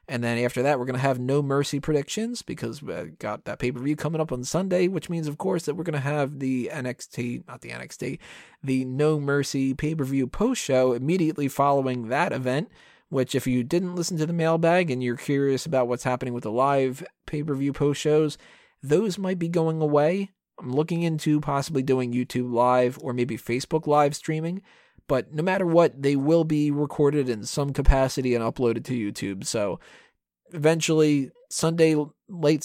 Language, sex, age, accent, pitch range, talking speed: English, male, 30-49, American, 125-155 Hz, 185 wpm